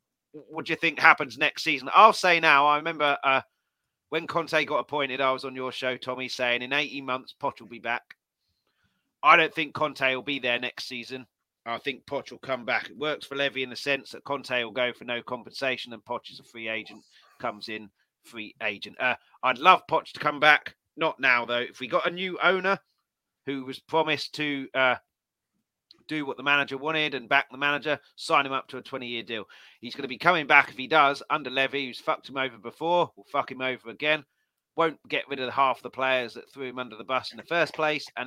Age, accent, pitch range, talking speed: 30-49, British, 120-150 Hz, 230 wpm